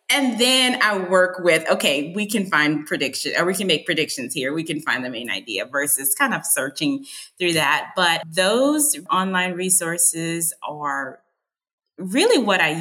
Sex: female